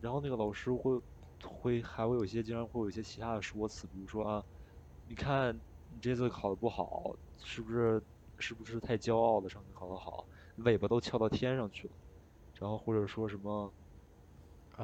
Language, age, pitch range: Chinese, 20-39, 100-125 Hz